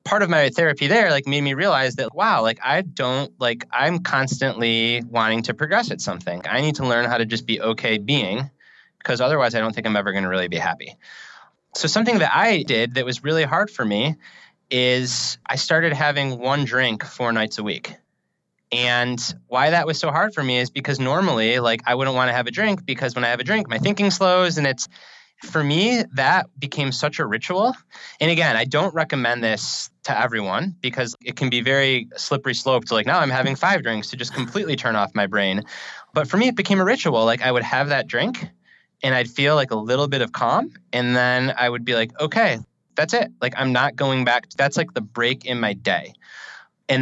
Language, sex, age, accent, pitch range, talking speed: English, male, 20-39, American, 120-155 Hz, 225 wpm